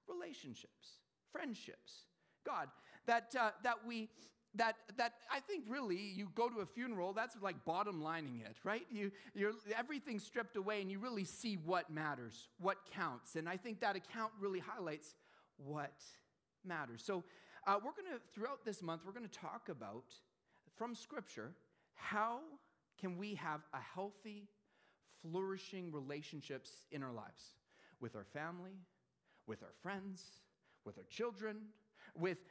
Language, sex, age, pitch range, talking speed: English, male, 40-59, 165-225 Hz, 140 wpm